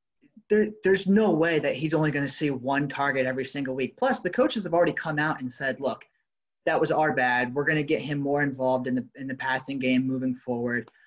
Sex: male